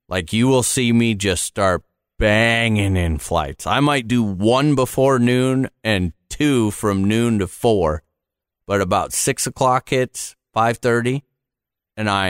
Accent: American